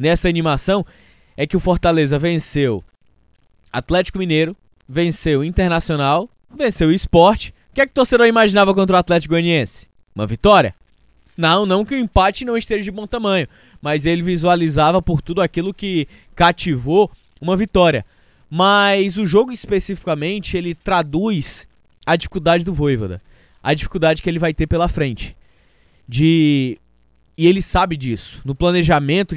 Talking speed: 145 wpm